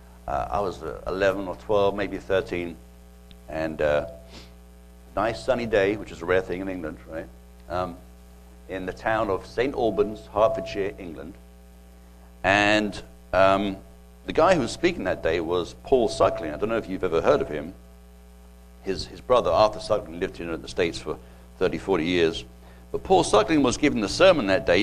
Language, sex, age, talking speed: English, male, 60-79, 185 wpm